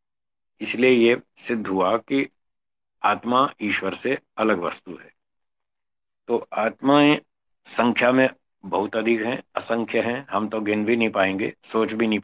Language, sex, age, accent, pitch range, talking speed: Hindi, male, 50-69, native, 100-120 Hz, 140 wpm